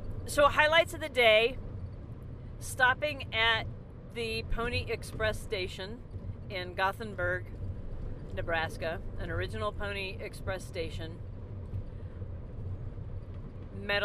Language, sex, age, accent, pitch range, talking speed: English, female, 50-69, American, 95-105 Hz, 85 wpm